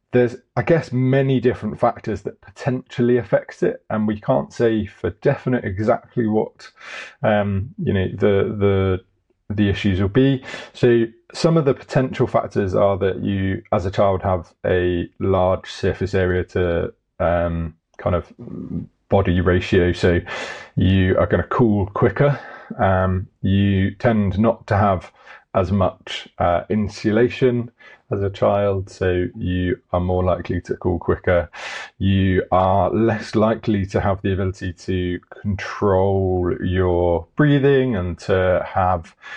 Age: 20-39